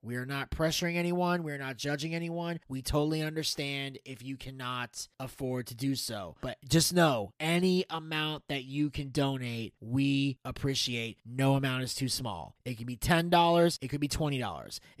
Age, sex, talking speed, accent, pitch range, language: 20-39, male, 175 wpm, American, 130-160 Hz, English